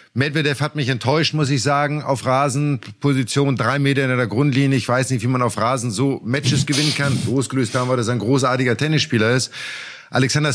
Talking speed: 200 wpm